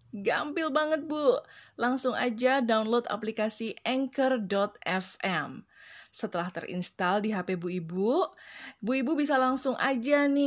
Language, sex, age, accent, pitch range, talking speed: Indonesian, female, 20-39, native, 205-290 Hz, 115 wpm